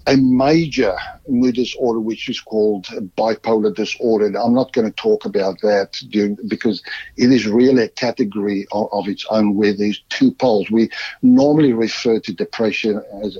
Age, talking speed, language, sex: 60-79, 160 wpm, English, male